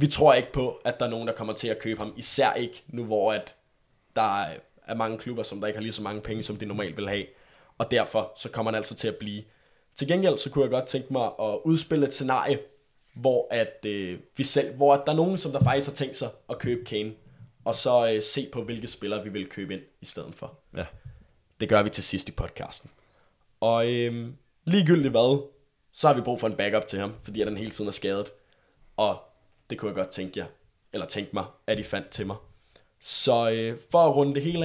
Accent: native